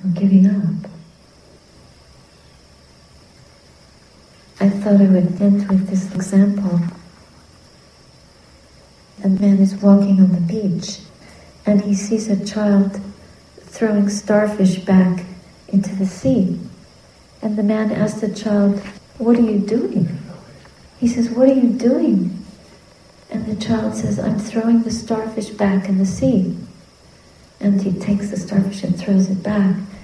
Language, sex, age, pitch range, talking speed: English, female, 50-69, 185-210 Hz, 130 wpm